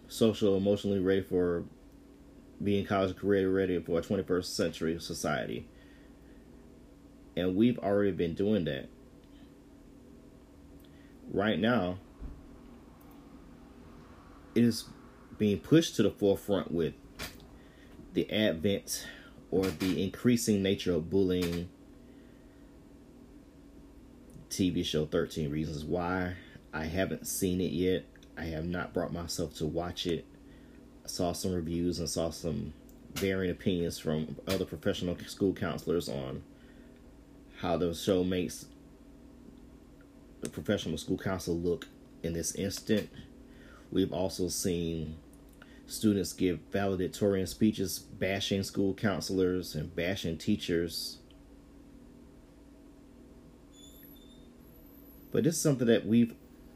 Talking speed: 105 wpm